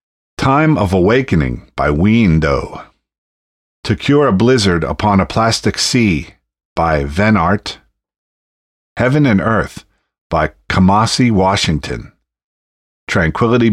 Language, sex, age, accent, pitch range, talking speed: English, male, 50-69, American, 80-105 Hz, 100 wpm